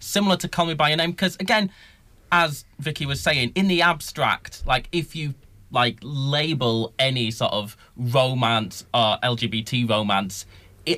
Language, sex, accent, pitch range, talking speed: English, male, British, 115-150 Hz, 155 wpm